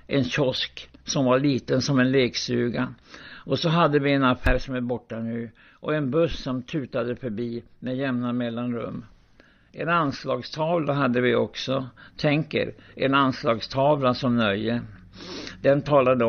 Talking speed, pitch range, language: 145 wpm, 120-140 Hz, Swedish